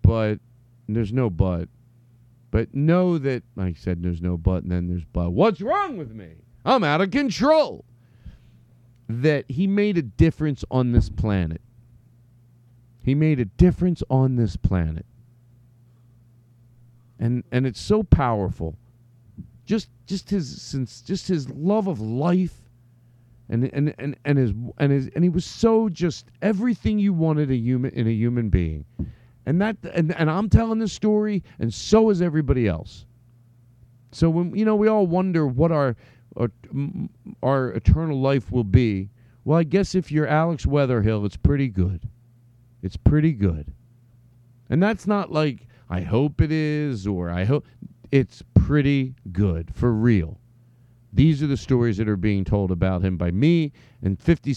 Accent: American